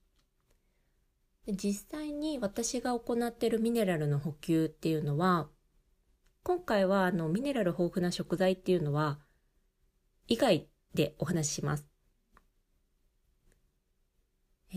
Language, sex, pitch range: Japanese, female, 145-210 Hz